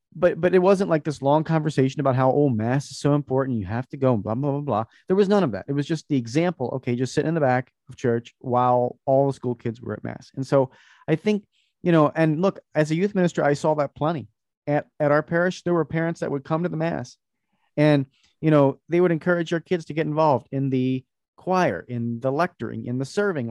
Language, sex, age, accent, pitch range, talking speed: English, male, 40-59, American, 125-165 Hz, 255 wpm